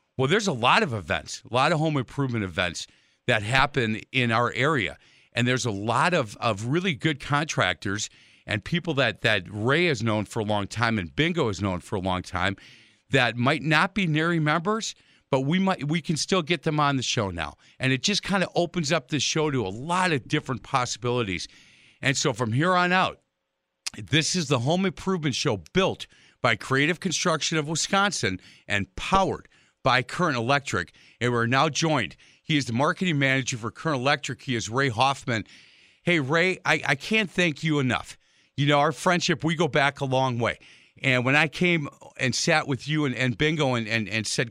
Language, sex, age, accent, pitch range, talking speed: English, male, 50-69, American, 115-155 Hz, 200 wpm